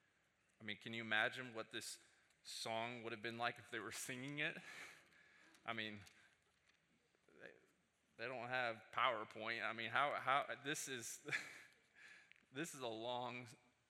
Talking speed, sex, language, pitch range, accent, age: 145 wpm, male, English, 110-130 Hz, American, 20-39